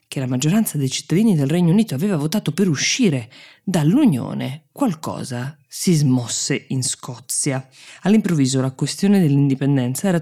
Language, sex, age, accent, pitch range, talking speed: Italian, female, 20-39, native, 140-170 Hz, 135 wpm